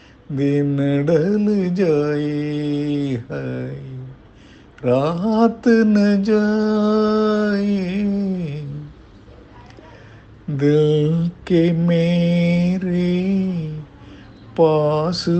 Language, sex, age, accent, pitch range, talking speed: Tamil, male, 50-69, native, 170-225 Hz, 45 wpm